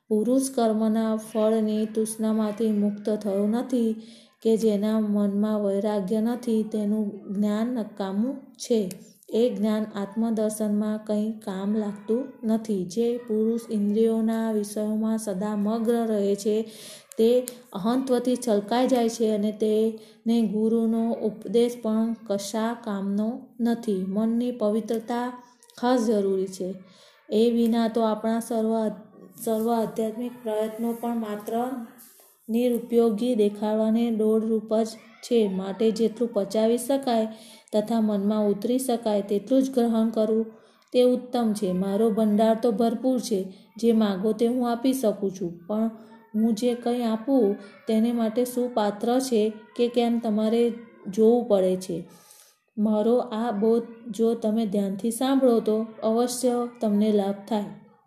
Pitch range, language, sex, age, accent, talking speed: 215-235 Hz, Gujarati, female, 20-39, native, 125 wpm